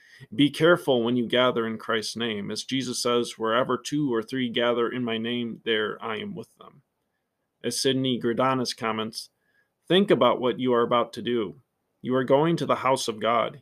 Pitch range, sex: 115-135 Hz, male